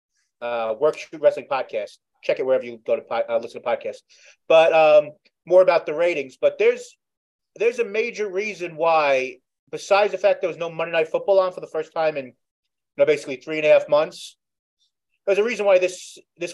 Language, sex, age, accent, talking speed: English, male, 30-49, American, 210 wpm